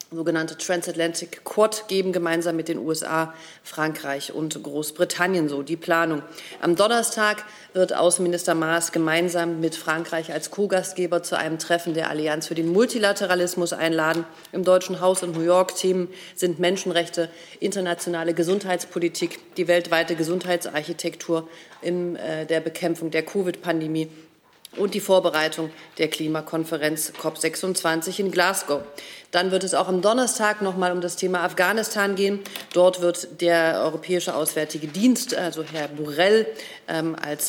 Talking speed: 130 wpm